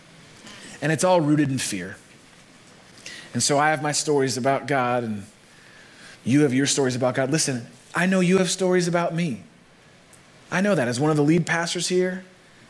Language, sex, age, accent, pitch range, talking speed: English, male, 30-49, American, 150-200 Hz, 185 wpm